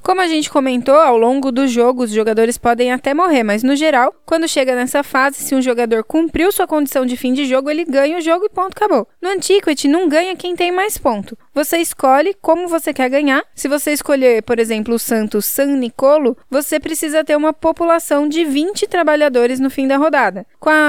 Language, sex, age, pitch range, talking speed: Portuguese, female, 10-29, 255-320 Hz, 210 wpm